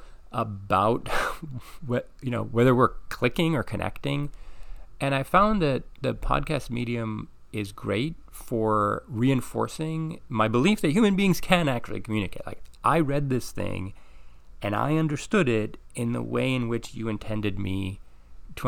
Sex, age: male, 30-49